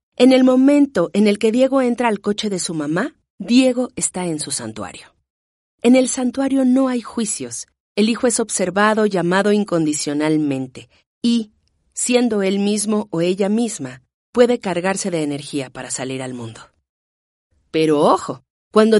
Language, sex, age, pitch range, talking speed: Spanish, female, 40-59, 150-235 Hz, 150 wpm